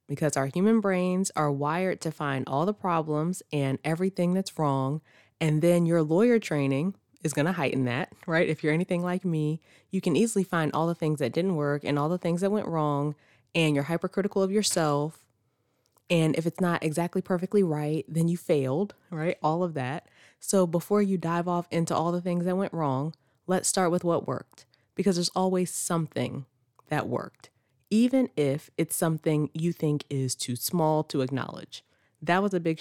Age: 20-39